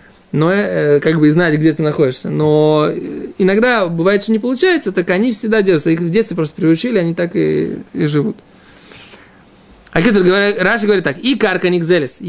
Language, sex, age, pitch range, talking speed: Russian, male, 20-39, 160-205 Hz, 180 wpm